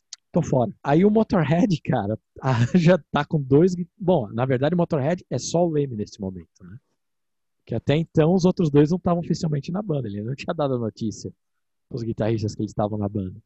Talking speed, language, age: 205 wpm, Portuguese, 50-69